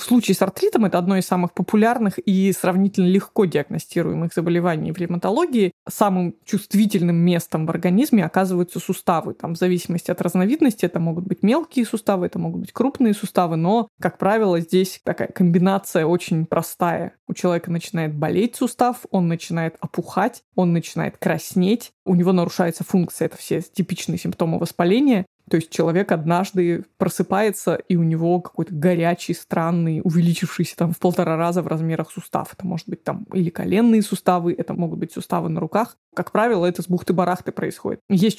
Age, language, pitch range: 20-39, Russian, 170-195 Hz